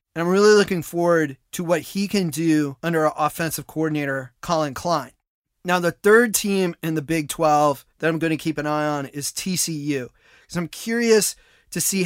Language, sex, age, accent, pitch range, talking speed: English, male, 30-49, American, 150-180 Hz, 200 wpm